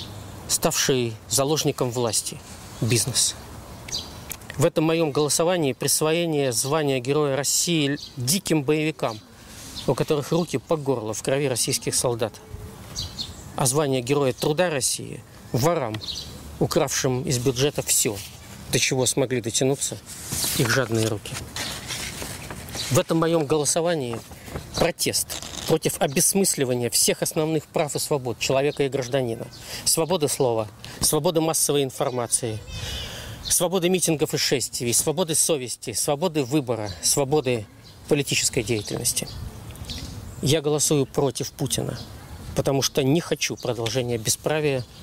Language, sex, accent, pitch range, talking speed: Russian, male, native, 115-150 Hz, 110 wpm